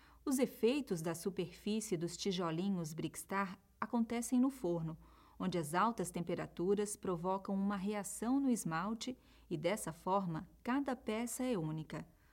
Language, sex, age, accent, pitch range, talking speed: Portuguese, female, 40-59, Brazilian, 180-240 Hz, 125 wpm